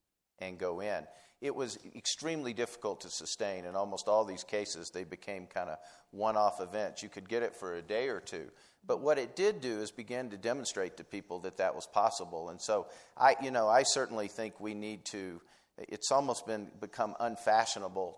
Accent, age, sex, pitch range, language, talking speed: American, 50-69, male, 100-120 Hz, English, 200 wpm